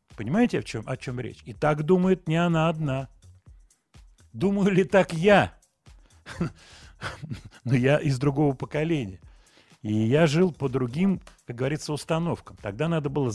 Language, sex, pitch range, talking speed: Russian, male, 120-170 Hz, 145 wpm